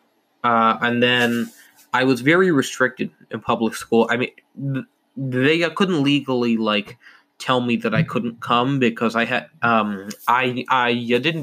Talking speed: 150 wpm